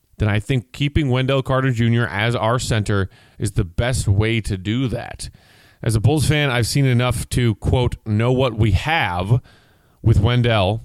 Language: English